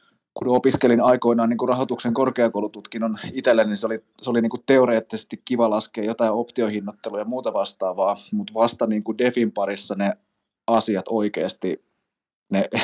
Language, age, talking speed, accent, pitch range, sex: Finnish, 20-39, 145 wpm, native, 105-120 Hz, male